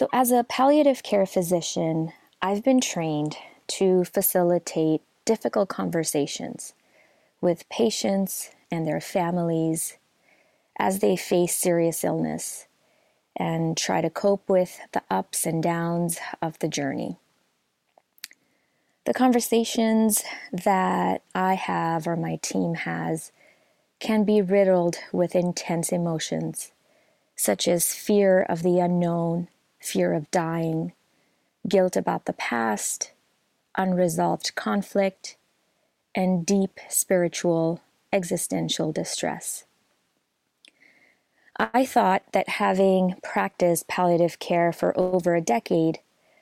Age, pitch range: 20-39, 165-195 Hz